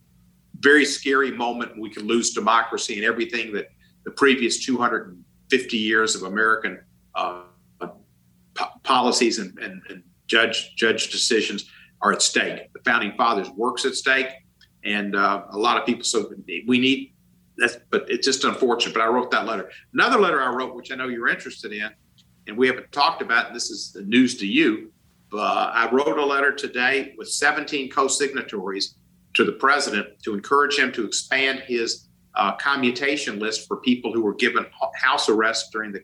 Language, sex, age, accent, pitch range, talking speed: English, male, 50-69, American, 95-130 Hz, 175 wpm